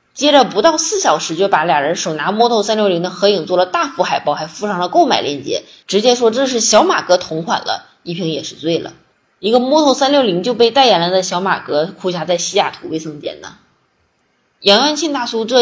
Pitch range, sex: 175-240 Hz, female